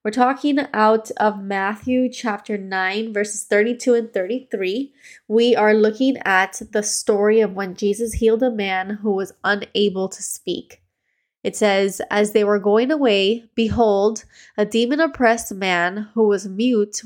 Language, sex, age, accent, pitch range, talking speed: English, female, 20-39, American, 195-225 Hz, 150 wpm